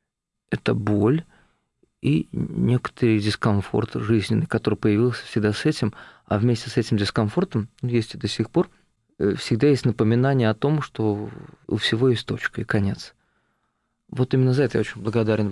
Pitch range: 110-135 Hz